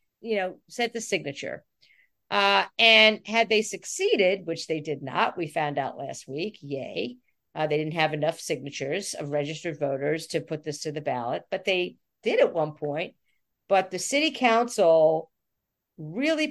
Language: English